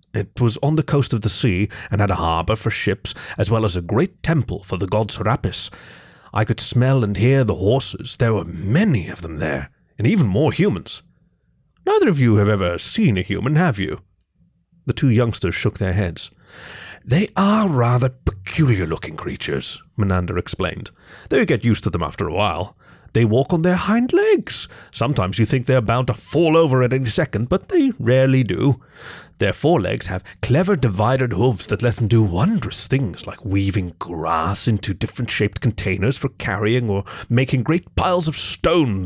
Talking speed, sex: 185 wpm, male